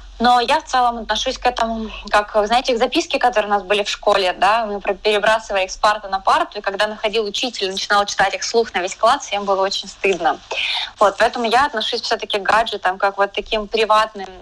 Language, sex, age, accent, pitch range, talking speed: Russian, female, 20-39, native, 200-235 Hz, 210 wpm